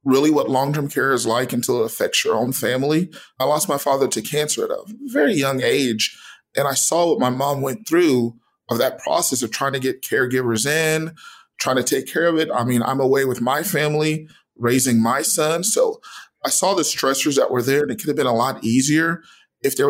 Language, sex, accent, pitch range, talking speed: English, male, American, 130-155 Hz, 225 wpm